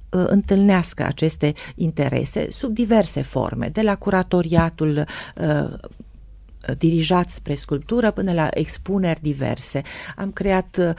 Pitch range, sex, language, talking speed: 150-190 Hz, female, Romanian, 100 wpm